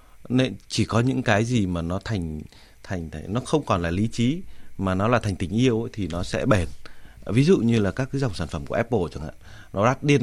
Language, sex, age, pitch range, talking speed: Vietnamese, male, 30-49, 100-135 Hz, 260 wpm